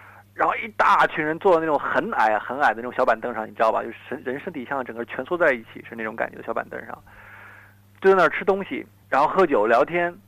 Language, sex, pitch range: Chinese, male, 105-170 Hz